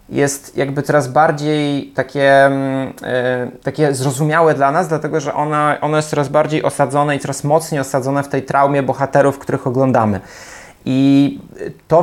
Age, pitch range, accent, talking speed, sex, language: 20-39, 135-155 Hz, native, 150 wpm, male, Polish